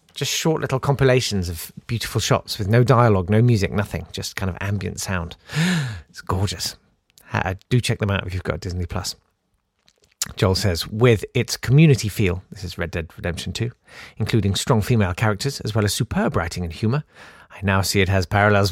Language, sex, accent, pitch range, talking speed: English, male, British, 95-130 Hz, 185 wpm